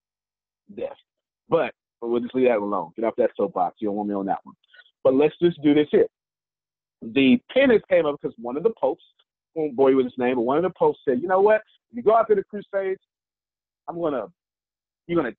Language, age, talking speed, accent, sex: English, 40-59, 220 wpm, American, male